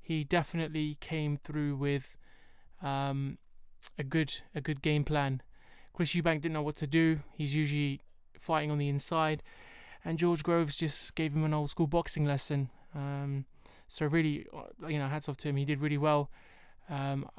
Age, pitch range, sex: 20-39, 140-160 Hz, male